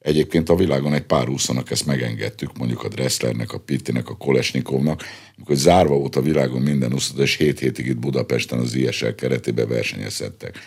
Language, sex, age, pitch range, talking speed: Hungarian, male, 50-69, 65-85 Hz, 175 wpm